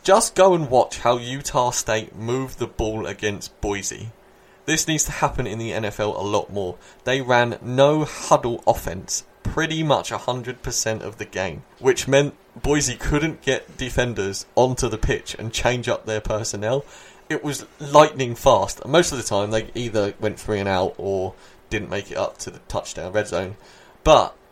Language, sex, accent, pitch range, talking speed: English, male, British, 110-140 Hz, 175 wpm